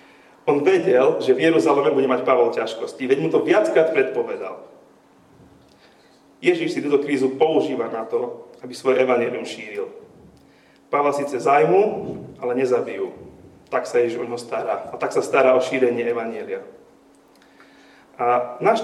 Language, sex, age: Slovak, male, 40-59